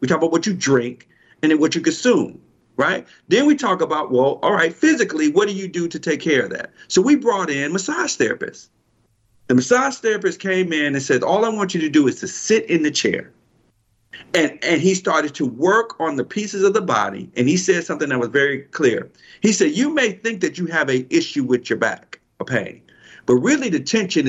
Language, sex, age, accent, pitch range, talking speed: English, male, 50-69, American, 130-200 Hz, 230 wpm